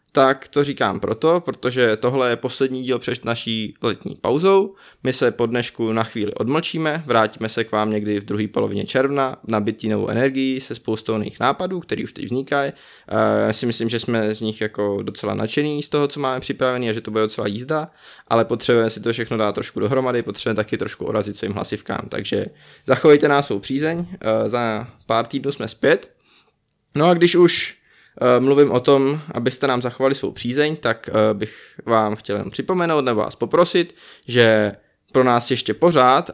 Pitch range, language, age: 110-140 Hz, Czech, 20-39